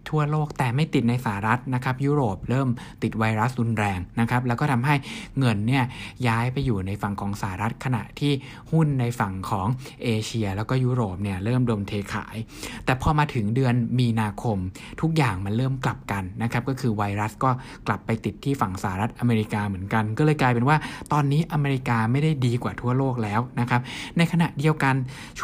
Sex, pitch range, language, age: male, 110-135 Hz, Thai, 60-79